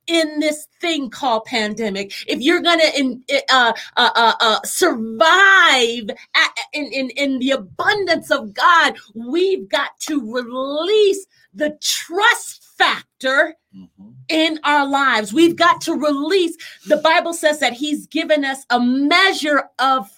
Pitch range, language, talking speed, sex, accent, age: 275-390 Hz, English, 135 wpm, female, American, 30-49